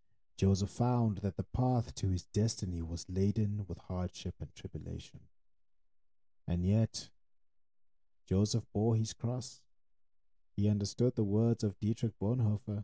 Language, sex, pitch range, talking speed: English, male, 95-115 Hz, 125 wpm